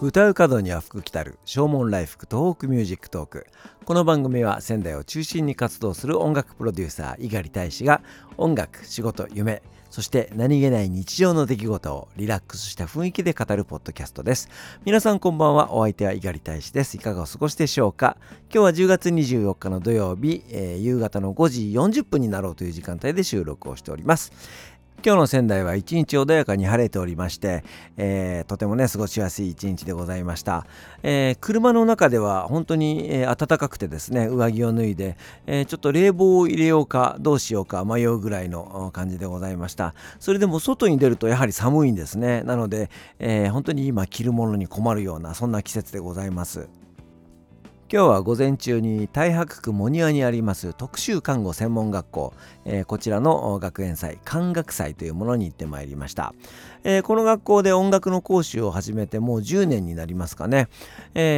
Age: 50-69